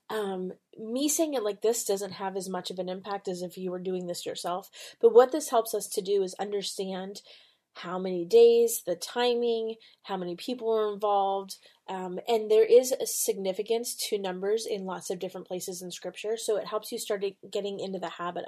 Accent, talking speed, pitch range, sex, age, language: American, 205 wpm, 185-215 Hz, female, 20-39, English